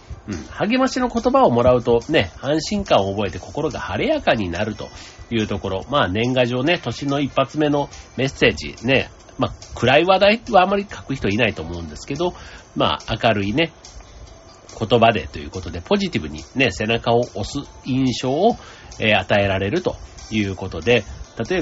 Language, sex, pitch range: Japanese, male, 95-130 Hz